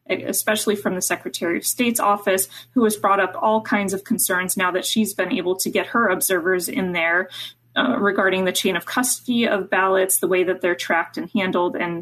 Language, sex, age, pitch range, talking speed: English, female, 20-39, 180-220 Hz, 210 wpm